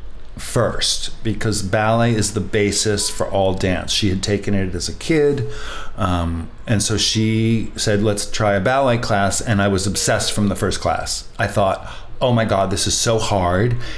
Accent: American